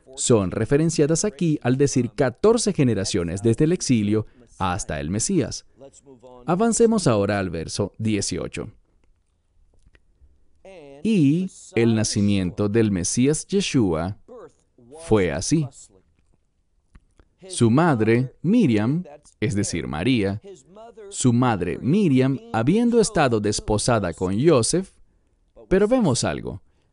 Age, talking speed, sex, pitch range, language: 40-59, 95 wpm, male, 95-160 Hz, English